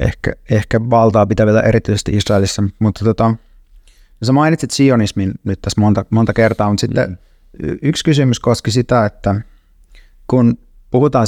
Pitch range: 100-120 Hz